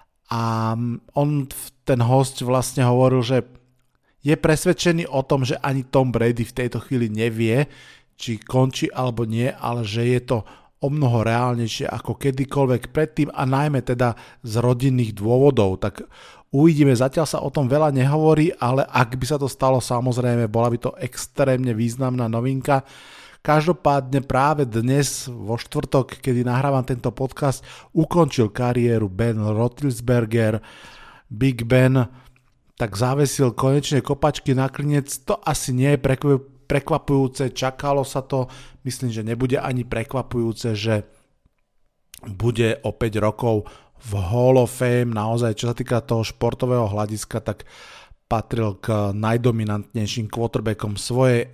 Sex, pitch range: male, 115-140 Hz